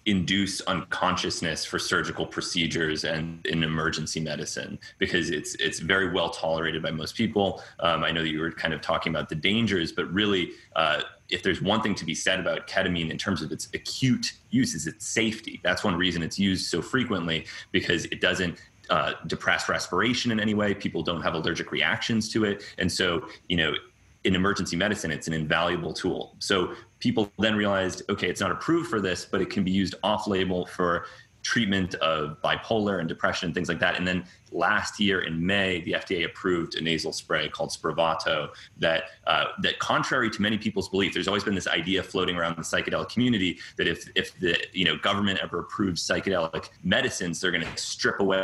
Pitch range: 80-100 Hz